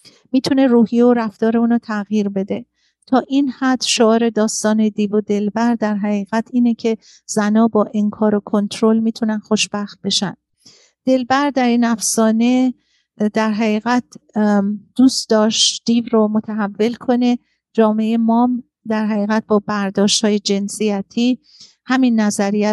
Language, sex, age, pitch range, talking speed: Persian, female, 50-69, 210-240 Hz, 130 wpm